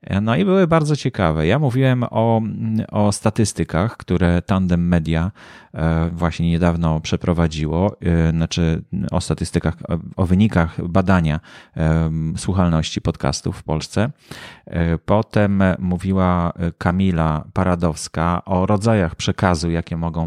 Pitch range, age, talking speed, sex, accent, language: 85-105 Hz, 30-49, 105 wpm, male, native, Polish